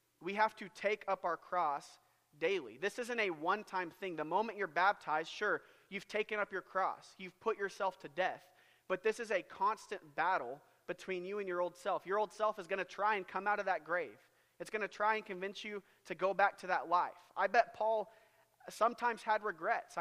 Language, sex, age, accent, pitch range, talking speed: English, male, 30-49, American, 175-210 Hz, 215 wpm